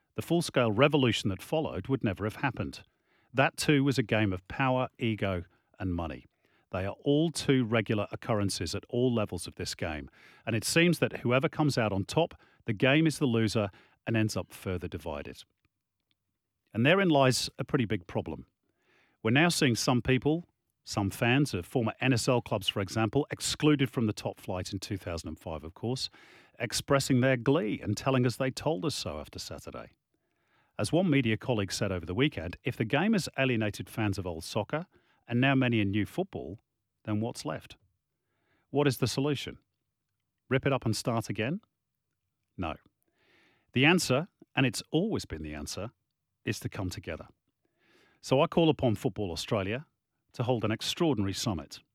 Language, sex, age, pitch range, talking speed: English, male, 40-59, 105-135 Hz, 175 wpm